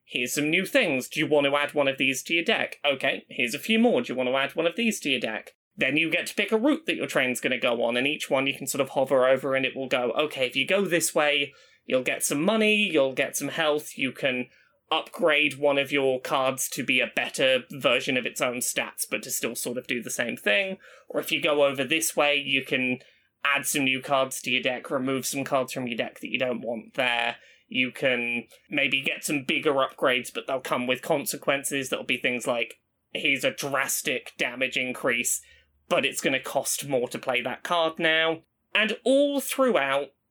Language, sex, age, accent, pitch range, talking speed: English, male, 20-39, British, 135-190 Hz, 240 wpm